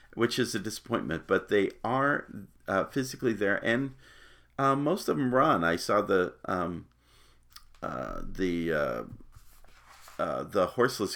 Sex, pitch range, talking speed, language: male, 85-115 Hz, 140 wpm, English